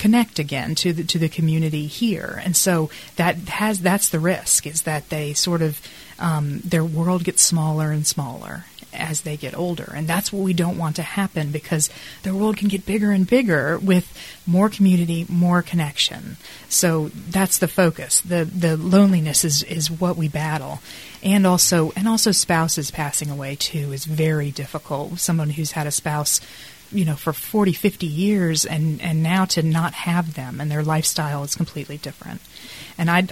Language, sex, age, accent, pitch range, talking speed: English, female, 30-49, American, 155-180 Hz, 185 wpm